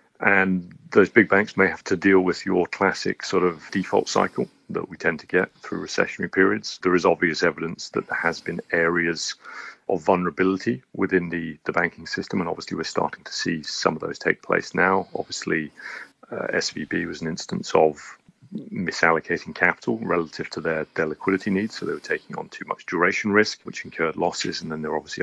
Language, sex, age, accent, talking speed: English, male, 40-59, British, 195 wpm